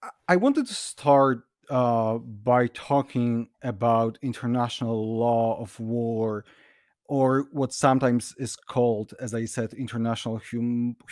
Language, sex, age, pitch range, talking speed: English, male, 30-49, 120-150 Hz, 120 wpm